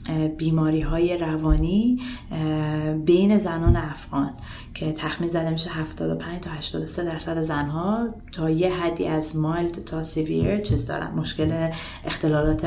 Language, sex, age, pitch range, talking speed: Persian, female, 20-39, 155-185 Hz, 130 wpm